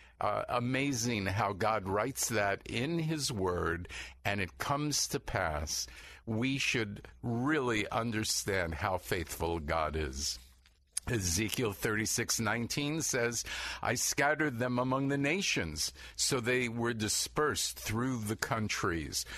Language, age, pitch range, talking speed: English, 50-69, 90-125 Hz, 120 wpm